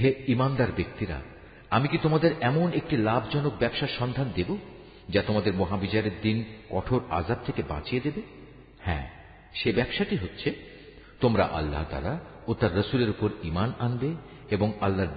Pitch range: 90-125 Hz